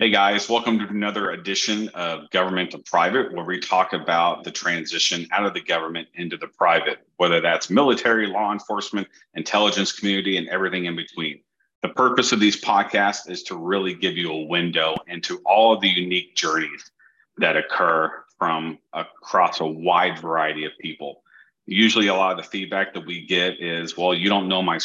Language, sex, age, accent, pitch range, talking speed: English, male, 40-59, American, 80-100 Hz, 185 wpm